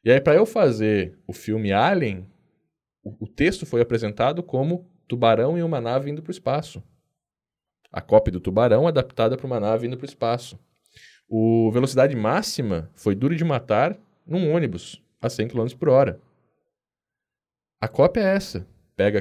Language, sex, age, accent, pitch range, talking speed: Portuguese, male, 10-29, Brazilian, 105-155 Hz, 165 wpm